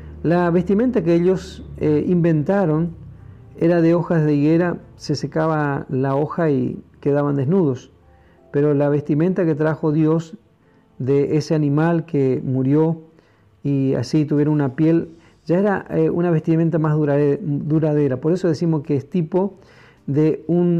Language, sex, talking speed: Spanish, male, 140 wpm